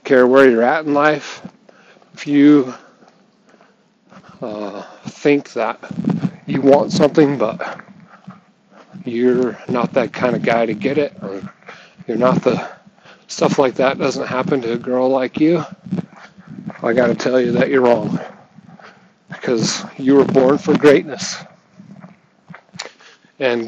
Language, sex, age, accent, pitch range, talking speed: English, male, 40-59, American, 125-190 Hz, 135 wpm